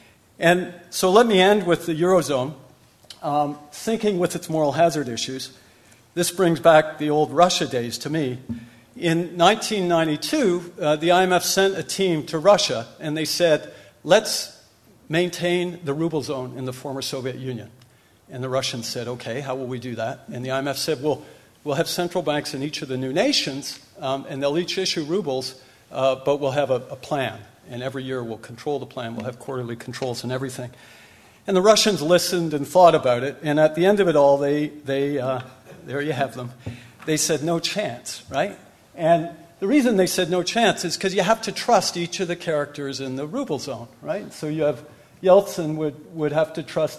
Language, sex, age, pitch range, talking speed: English, male, 50-69, 130-175 Hz, 200 wpm